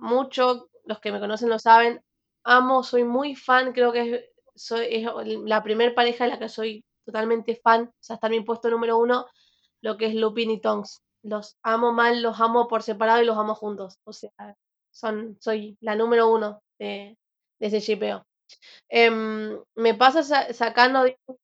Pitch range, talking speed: 215-245 Hz, 185 wpm